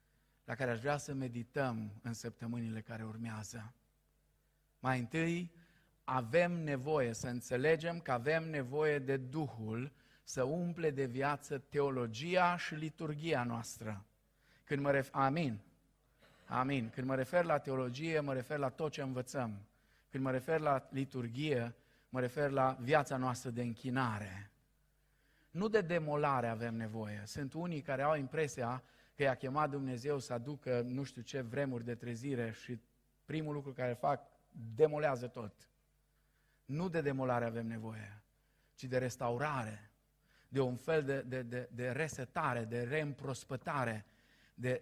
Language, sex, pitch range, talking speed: Romanian, male, 120-150 Hz, 140 wpm